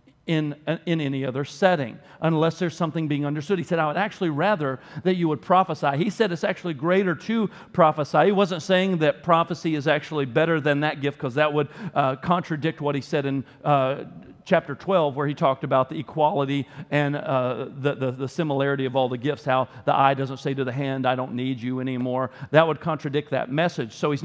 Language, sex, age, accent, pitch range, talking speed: English, male, 40-59, American, 150-200 Hz, 215 wpm